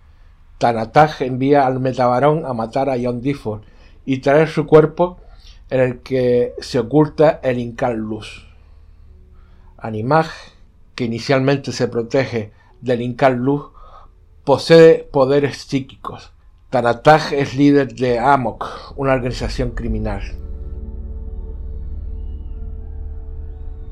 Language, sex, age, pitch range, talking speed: Spanish, male, 60-79, 90-140 Hz, 100 wpm